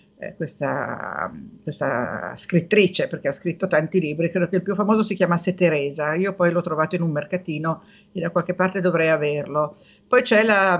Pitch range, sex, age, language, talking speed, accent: 165-195 Hz, female, 50-69, Italian, 180 wpm, native